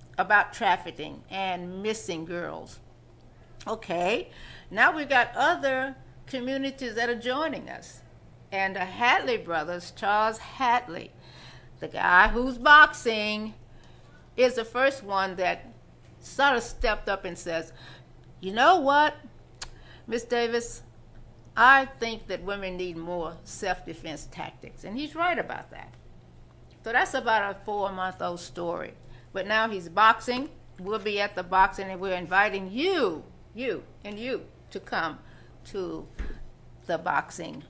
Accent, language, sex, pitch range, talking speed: American, English, female, 175-240 Hz, 130 wpm